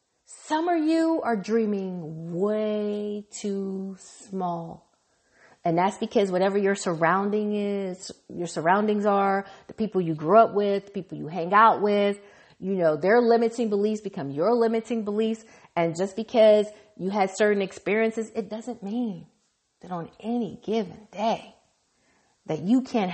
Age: 40-59